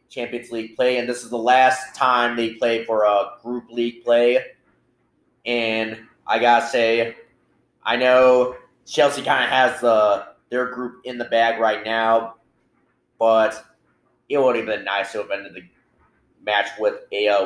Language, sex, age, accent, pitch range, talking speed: English, male, 30-49, American, 110-125 Hz, 170 wpm